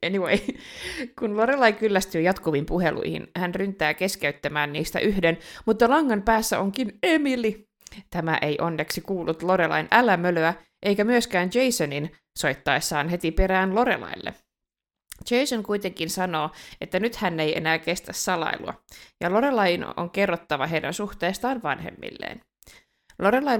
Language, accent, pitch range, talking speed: Finnish, native, 165-225 Hz, 120 wpm